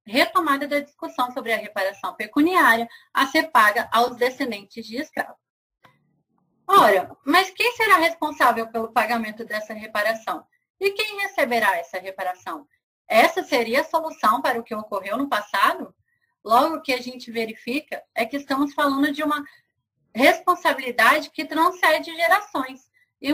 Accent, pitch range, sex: Brazilian, 240-330 Hz, female